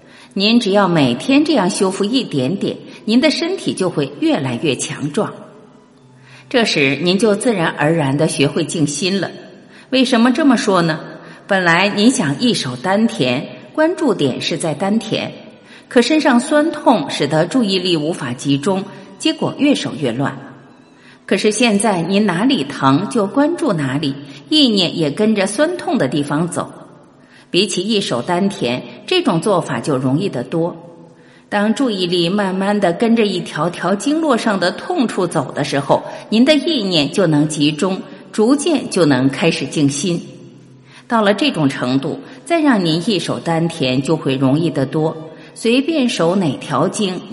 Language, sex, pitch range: Chinese, female, 155-240 Hz